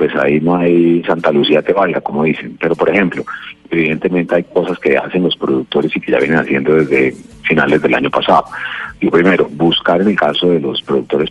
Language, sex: Spanish, male